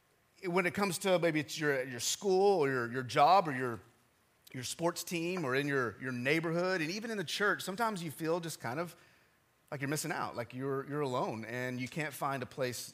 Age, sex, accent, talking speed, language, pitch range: 30-49, male, American, 225 wpm, English, 140-185 Hz